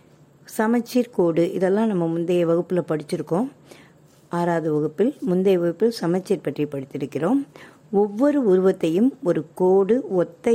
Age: 60-79